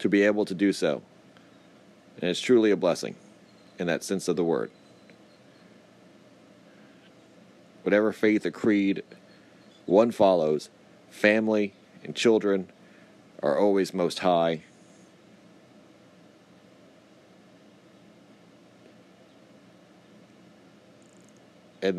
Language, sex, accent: English, male, American